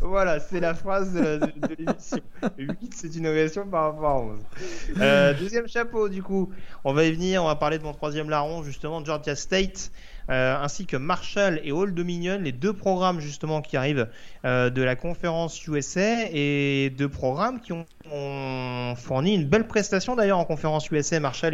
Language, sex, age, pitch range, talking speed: French, male, 30-49, 140-180 Hz, 185 wpm